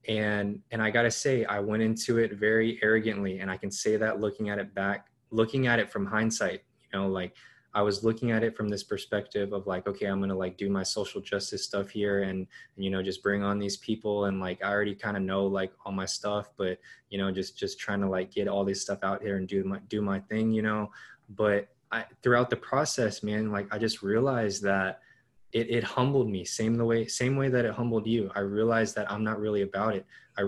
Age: 20-39